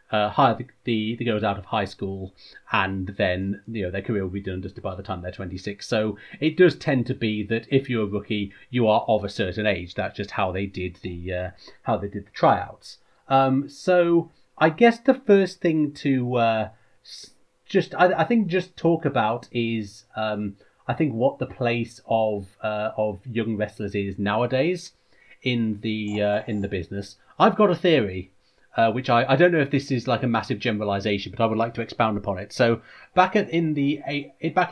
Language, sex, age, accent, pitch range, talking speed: English, male, 30-49, British, 105-135 Hz, 205 wpm